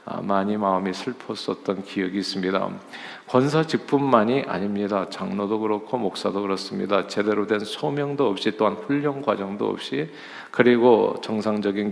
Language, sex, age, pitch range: Korean, male, 50-69, 105-130 Hz